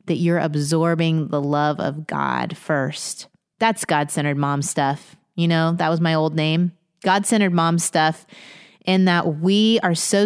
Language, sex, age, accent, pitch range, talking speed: English, female, 30-49, American, 155-195 Hz, 160 wpm